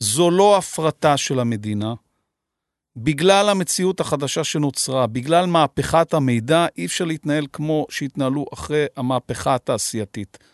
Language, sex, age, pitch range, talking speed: Hebrew, male, 50-69, 145-195 Hz, 110 wpm